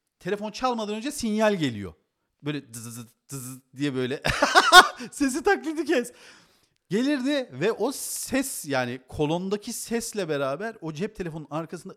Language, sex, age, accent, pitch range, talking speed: Turkish, male, 40-59, native, 135-210 Hz, 130 wpm